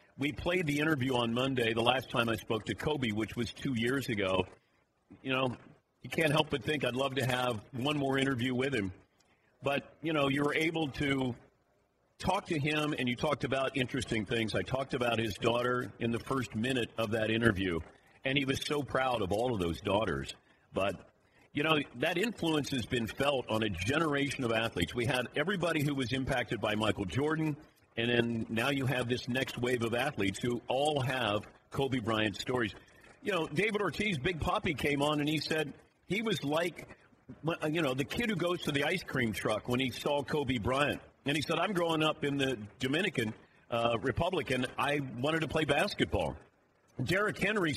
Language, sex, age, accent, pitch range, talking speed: English, male, 50-69, American, 115-150 Hz, 200 wpm